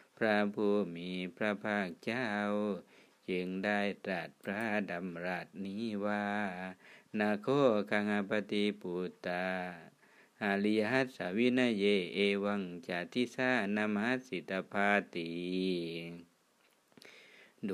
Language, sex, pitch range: Thai, male, 95-115 Hz